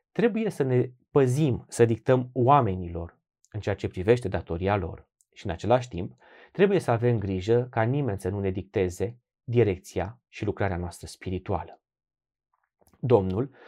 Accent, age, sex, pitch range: native, 30-49, male, 100-130 Hz